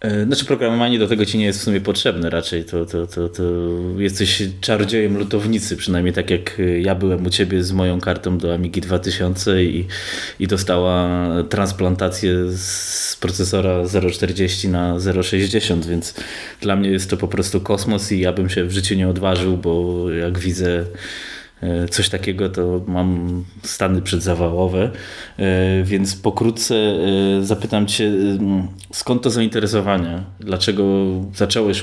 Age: 20-39